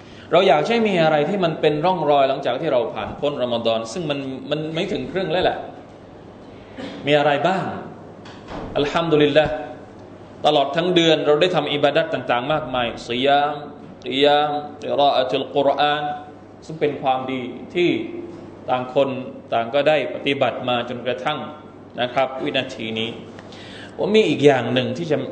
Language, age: Thai, 20-39